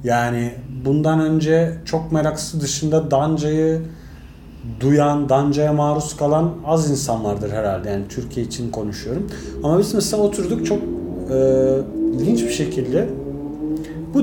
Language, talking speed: Turkish, 120 wpm